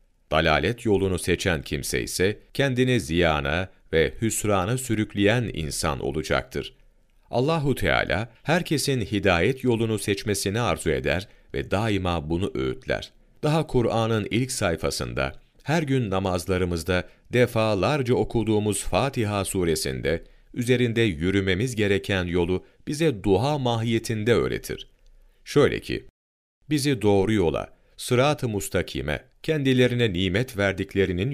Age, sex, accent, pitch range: 40-59, male, native, 85-120 Hz